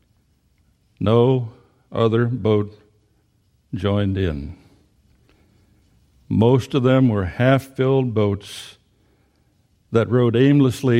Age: 60-79